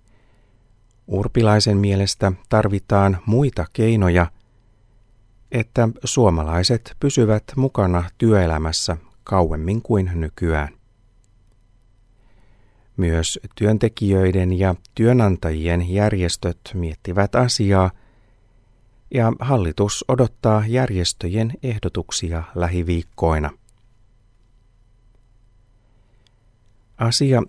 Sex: male